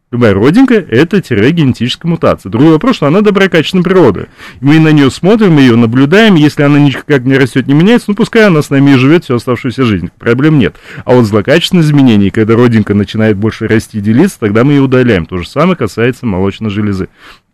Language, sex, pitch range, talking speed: Russian, male, 100-140 Hz, 200 wpm